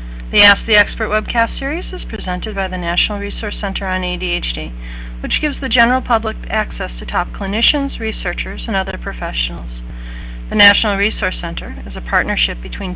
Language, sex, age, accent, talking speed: English, female, 40-59, American, 165 wpm